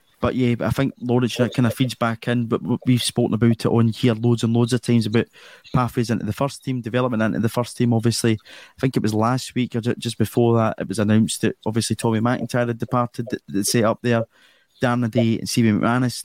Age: 20-39